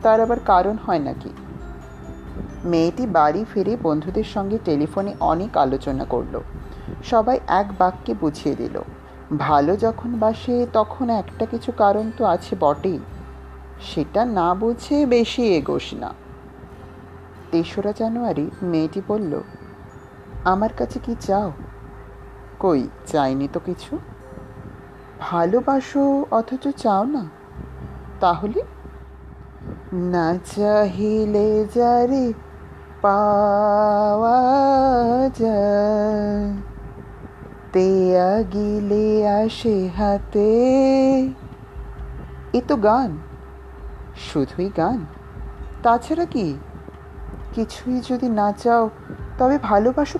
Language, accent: Bengali, native